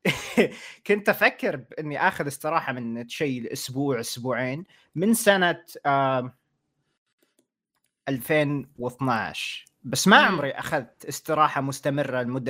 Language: Arabic